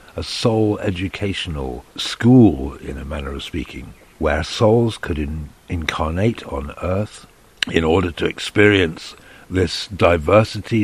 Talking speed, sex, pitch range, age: 115 wpm, male, 80-105 Hz, 60-79